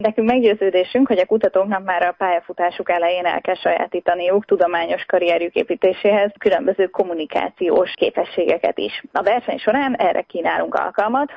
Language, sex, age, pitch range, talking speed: Hungarian, female, 20-39, 180-230 Hz, 130 wpm